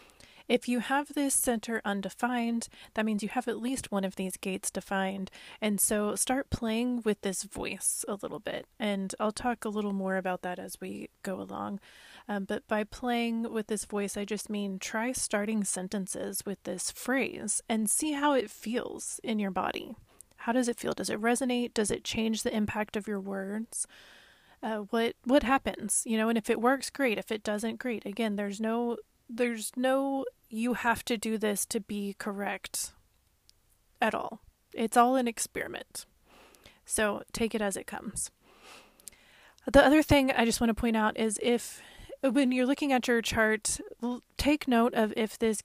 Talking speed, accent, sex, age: 185 wpm, American, female, 30-49